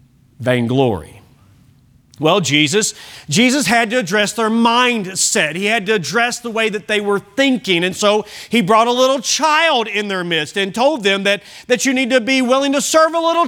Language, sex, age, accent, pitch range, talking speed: English, male, 40-59, American, 140-225 Hz, 190 wpm